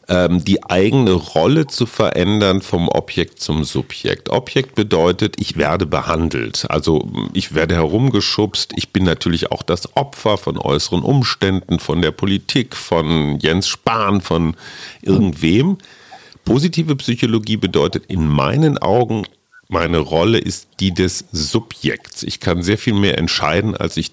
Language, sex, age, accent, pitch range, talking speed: German, male, 50-69, German, 90-125 Hz, 135 wpm